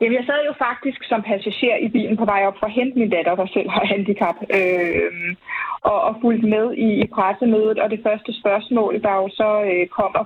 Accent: native